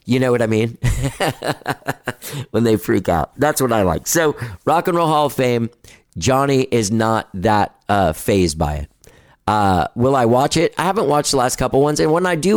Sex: male